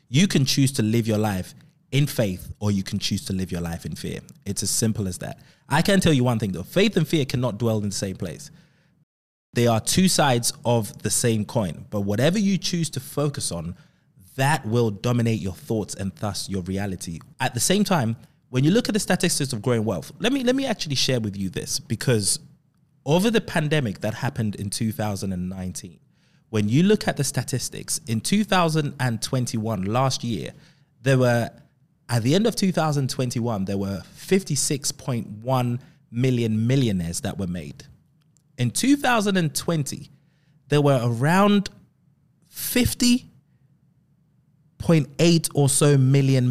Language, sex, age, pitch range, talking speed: English, male, 20-39, 110-155 Hz, 165 wpm